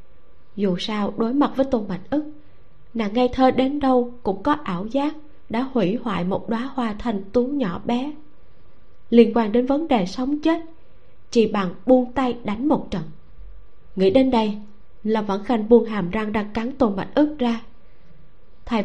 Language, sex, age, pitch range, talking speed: Vietnamese, female, 20-39, 195-250 Hz, 180 wpm